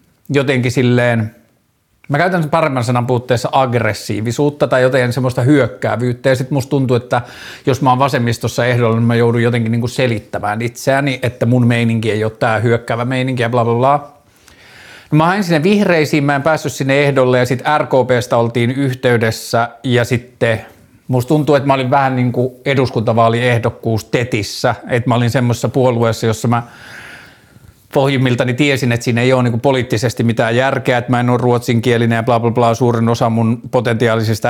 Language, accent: Finnish, native